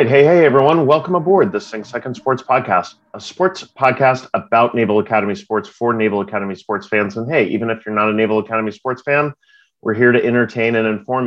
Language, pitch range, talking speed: English, 100-120 Hz, 210 wpm